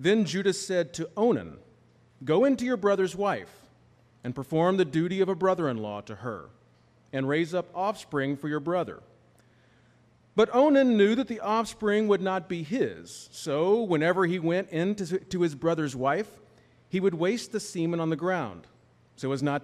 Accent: American